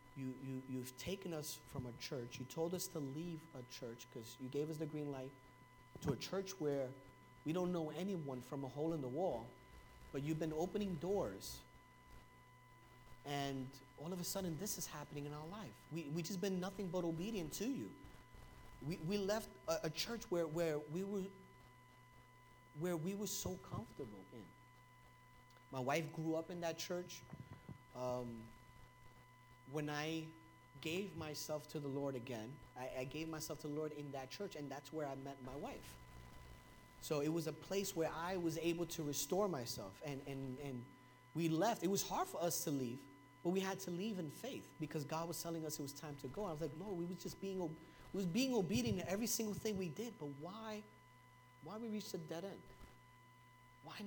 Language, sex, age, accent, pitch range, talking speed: English, male, 30-49, American, 125-170 Hz, 200 wpm